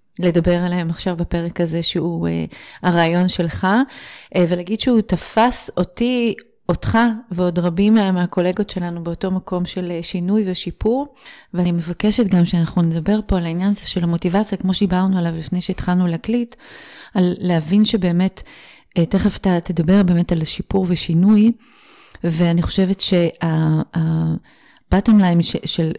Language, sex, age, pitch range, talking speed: Hebrew, female, 30-49, 170-200 Hz, 135 wpm